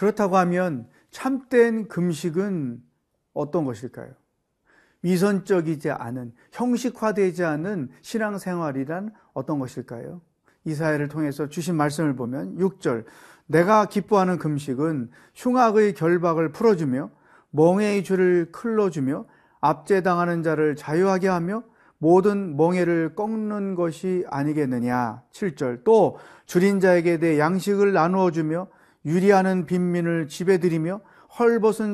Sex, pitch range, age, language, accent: male, 150-195 Hz, 40-59, Korean, native